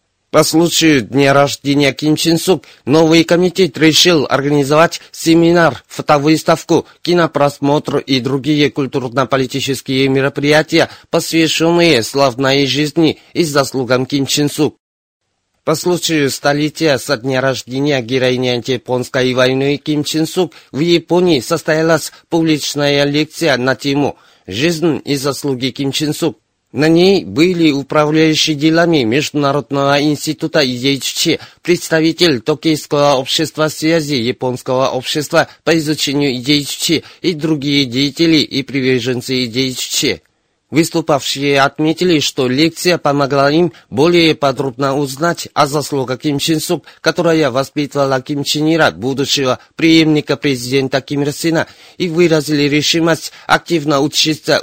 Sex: male